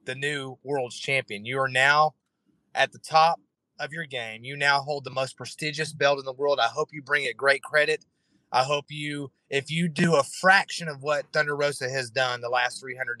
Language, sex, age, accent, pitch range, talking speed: English, male, 30-49, American, 130-165 Hz, 215 wpm